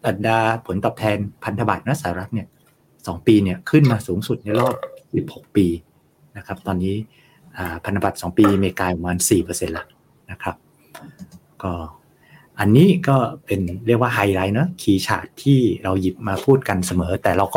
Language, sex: Thai, male